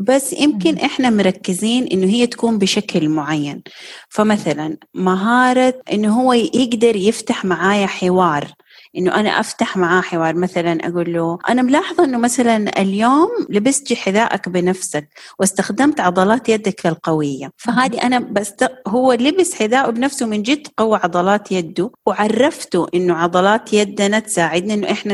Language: Arabic